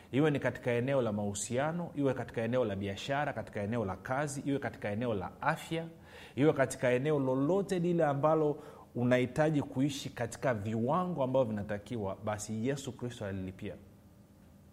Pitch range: 100-135 Hz